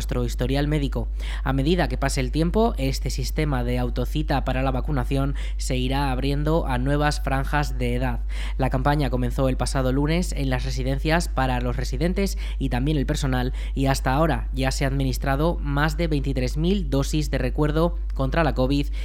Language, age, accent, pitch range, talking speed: Spanish, 20-39, Spanish, 130-155 Hz, 175 wpm